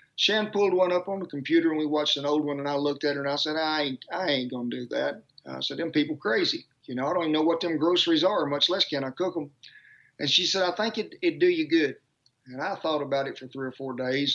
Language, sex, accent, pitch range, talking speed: English, male, American, 135-165 Hz, 295 wpm